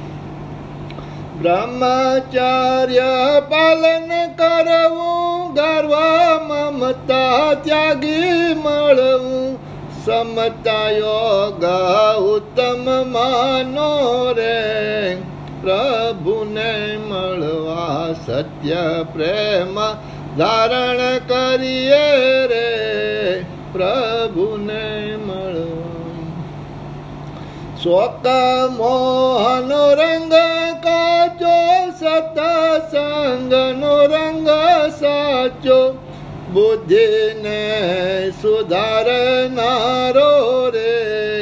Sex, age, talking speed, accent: male, 60-79, 35 wpm, native